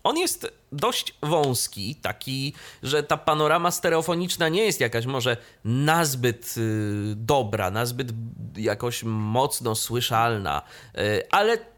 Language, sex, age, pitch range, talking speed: Polish, male, 30-49, 115-160 Hz, 100 wpm